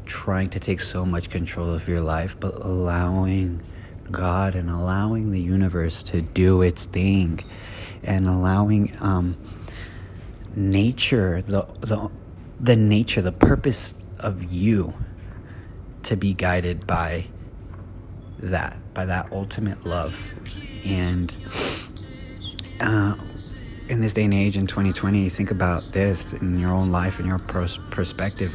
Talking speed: 125 wpm